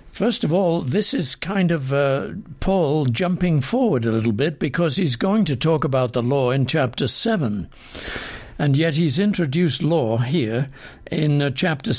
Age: 60-79